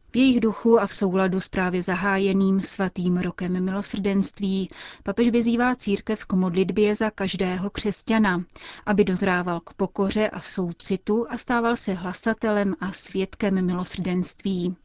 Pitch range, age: 185-210 Hz, 30-49